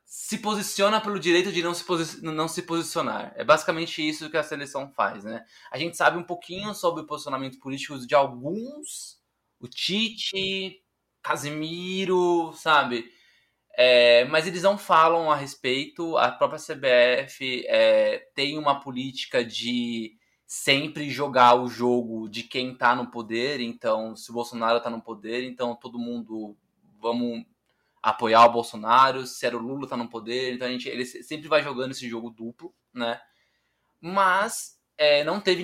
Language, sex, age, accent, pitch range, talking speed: Portuguese, male, 20-39, Brazilian, 120-170 Hz, 160 wpm